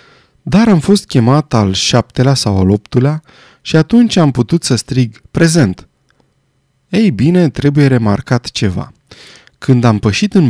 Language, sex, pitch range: Romanian, male, 110-155 Hz